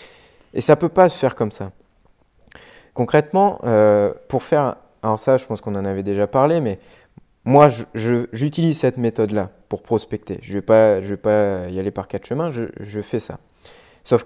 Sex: male